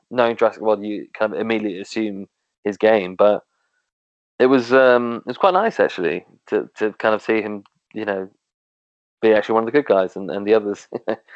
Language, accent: English, British